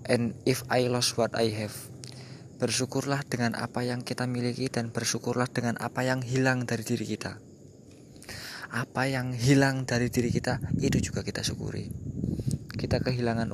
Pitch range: 115-130 Hz